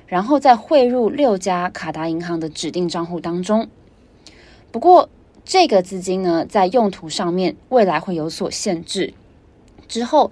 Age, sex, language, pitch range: 20-39, female, Chinese, 165-220 Hz